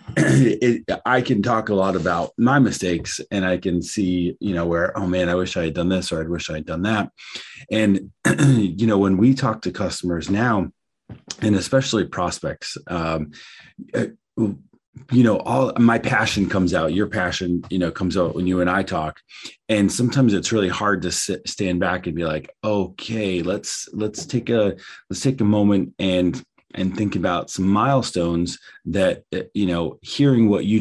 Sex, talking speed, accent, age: male, 185 wpm, American, 30-49